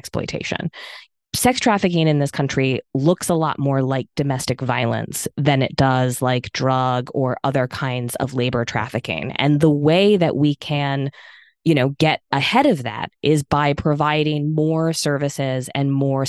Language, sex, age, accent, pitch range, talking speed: English, female, 20-39, American, 135-170 Hz, 160 wpm